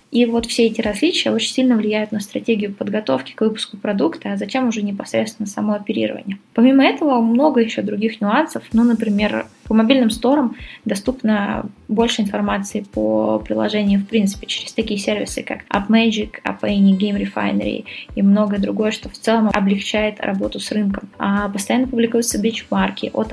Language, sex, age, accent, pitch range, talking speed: Russian, female, 20-39, native, 200-230 Hz, 155 wpm